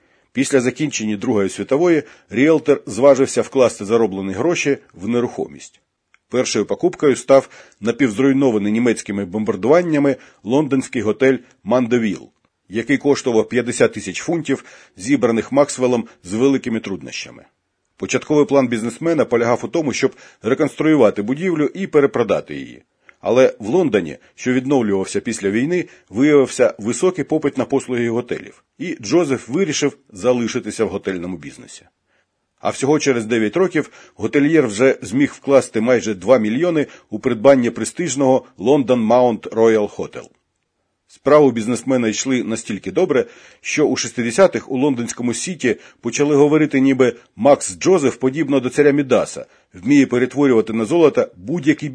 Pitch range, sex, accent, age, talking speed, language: 115-145 Hz, male, native, 40-59, 120 wpm, Ukrainian